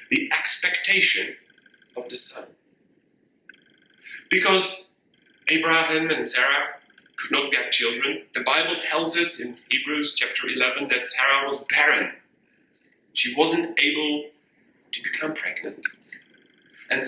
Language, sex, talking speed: English, male, 110 wpm